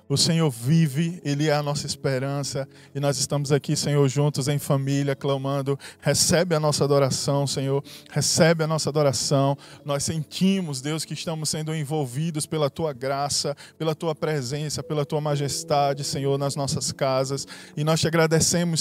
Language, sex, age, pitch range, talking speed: Portuguese, male, 20-39, 140-160 Hz, 160 wpm